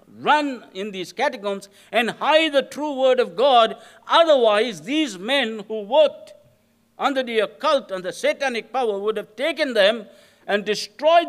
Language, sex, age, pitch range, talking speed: English, male, 60-79, 170-255 Hz, 155 wpm